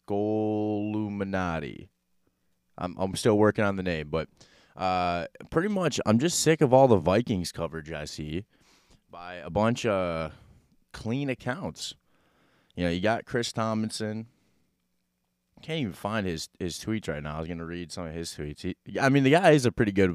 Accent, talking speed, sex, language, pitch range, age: American, 175 wpm, male, English, 85-110 Hz, 20-39